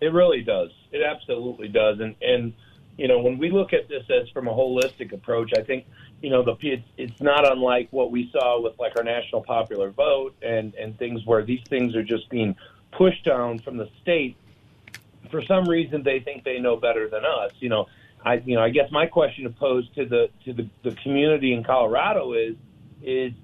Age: 40-59